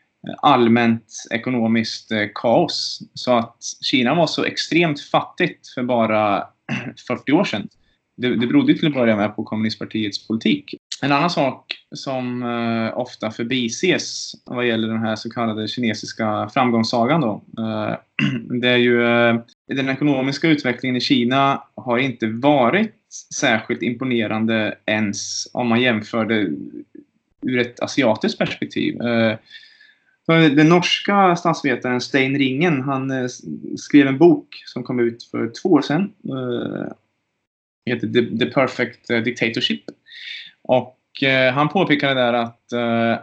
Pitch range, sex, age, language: 115-140 Hz, male, 20-39, Swedish